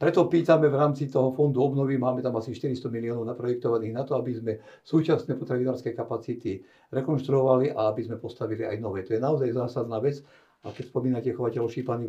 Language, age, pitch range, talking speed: Slovak, 60-79, 120-140 Hz, 185 wpm